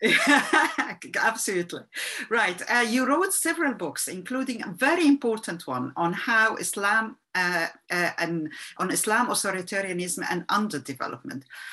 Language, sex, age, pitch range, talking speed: Turkish, female, 50-69, 165-235 Hz, 120 wpm